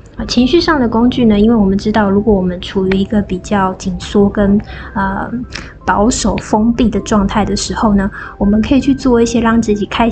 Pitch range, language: 200-235 Hz, Chinese